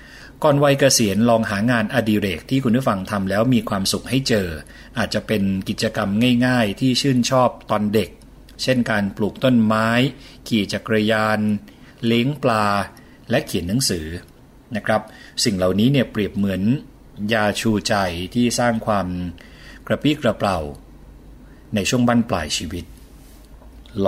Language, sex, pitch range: Thai, male, 95-115 Hz